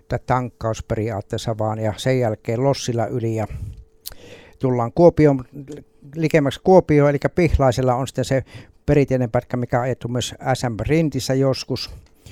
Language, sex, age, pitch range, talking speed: Finnish, male, 60-79, 115-135 Hz, 125 wpm